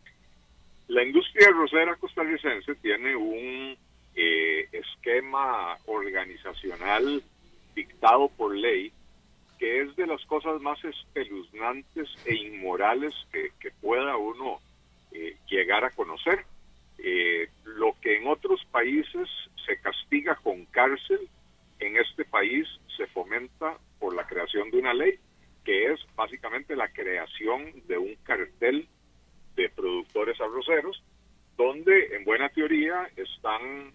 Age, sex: 50-69, male